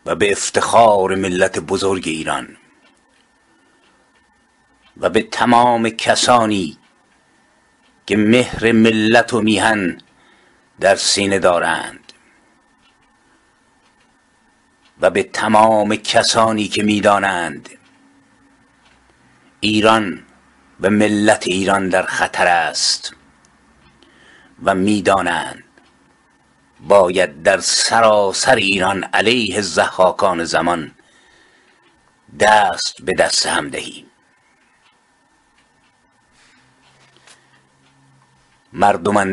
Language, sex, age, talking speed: Persian, male, 50-69, 70 wpm